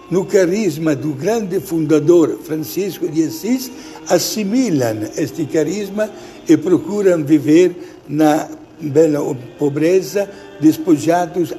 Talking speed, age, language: 95 wpm, 60-79, Portuguese